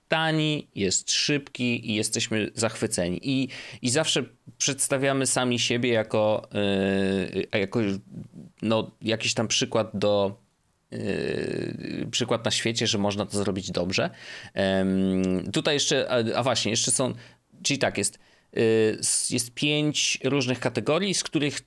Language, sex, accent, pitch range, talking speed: Polish, male, native, 100-135 Hz, 115 wpm